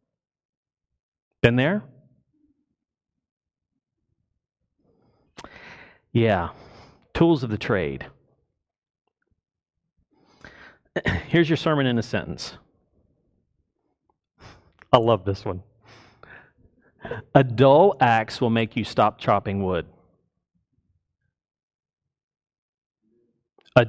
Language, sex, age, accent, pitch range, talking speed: English, male, 40-59, American, 110-155 Hz, 70 wpm